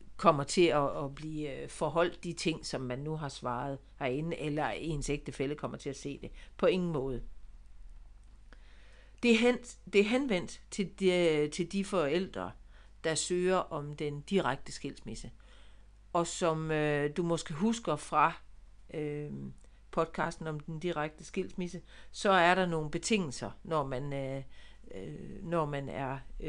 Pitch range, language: 135-175 Hz, Danish